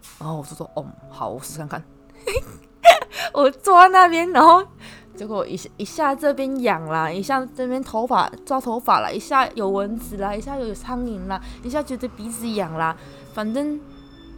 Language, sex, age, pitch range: Chinese, female, 20-39, 185-275 Hz